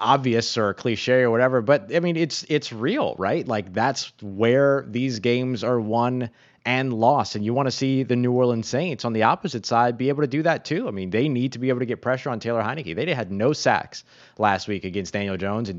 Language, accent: English, American